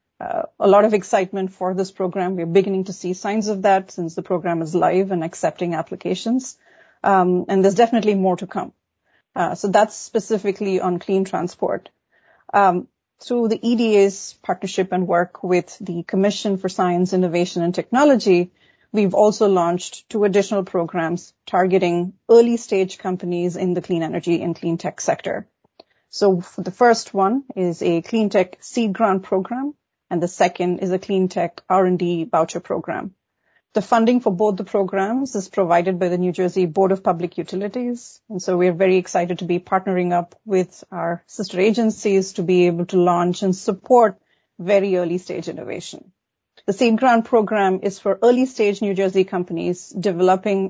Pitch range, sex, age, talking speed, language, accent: 180-210 Hz, female, 30-49, 170 wpm, English, Indian